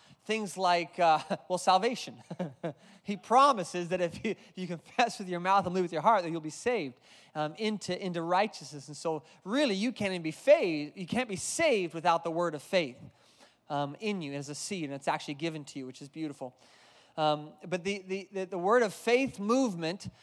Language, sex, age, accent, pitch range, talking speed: English, male, 30-49, American, 175-240 Hz, 210 wpm